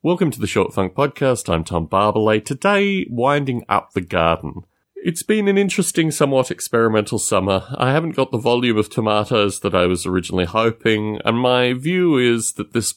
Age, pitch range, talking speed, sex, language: 30-49, 95-140 Hz, 180 wpm, male, English